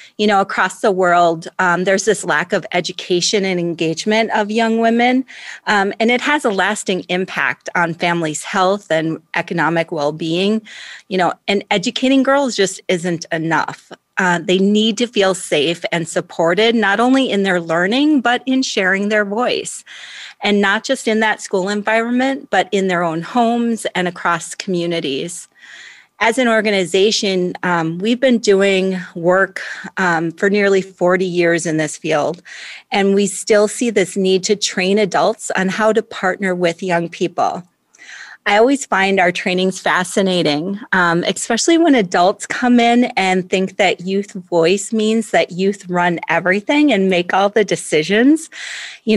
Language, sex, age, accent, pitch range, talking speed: English, female, 30-49, American, 175-215 Hz, 160 wpm